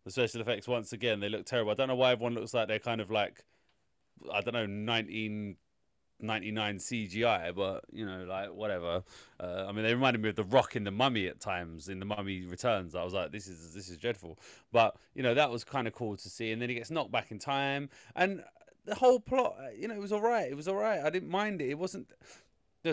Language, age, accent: English, 30-49, British